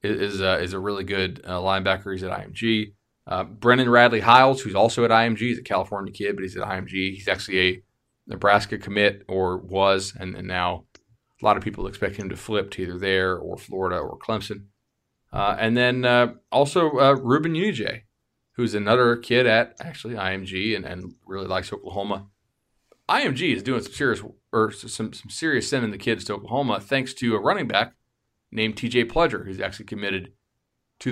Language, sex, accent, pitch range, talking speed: English, male, American, 95-125 Hz, 185 wpm